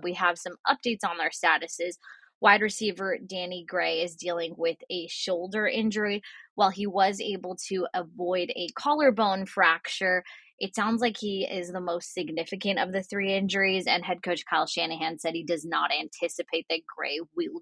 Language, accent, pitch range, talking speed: English, American, 170-205 Hz, 175 wpm